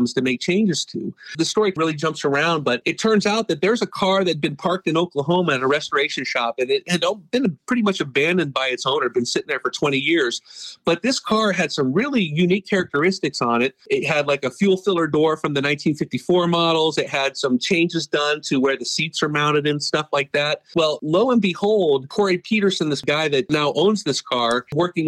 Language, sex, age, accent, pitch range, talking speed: English, male, 40-59, American, 140-180 Hz, 225 wpm